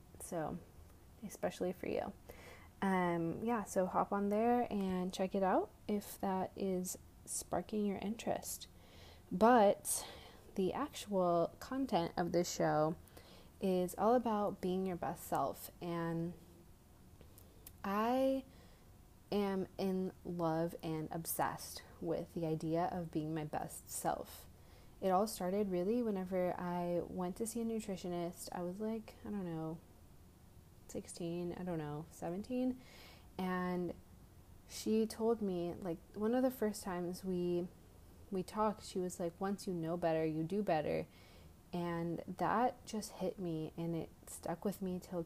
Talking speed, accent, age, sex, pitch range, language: 140 wpm, American, 20-39, female, 160-195 Hz, English